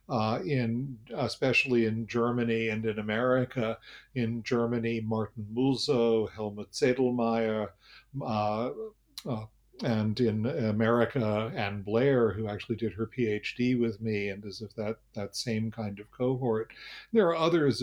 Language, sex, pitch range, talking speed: English, male, 110-135 Hz, 135 wpm